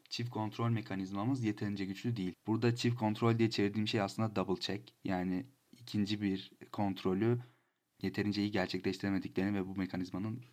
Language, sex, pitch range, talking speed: Turkish, male, 95-110 Hz, 140 wpm